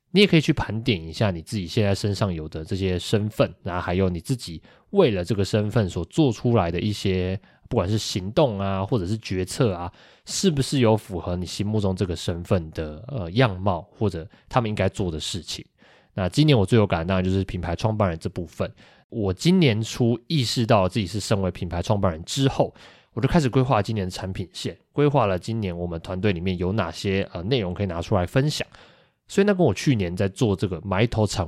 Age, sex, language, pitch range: 20-39, male, Chinese, 90-120 Hz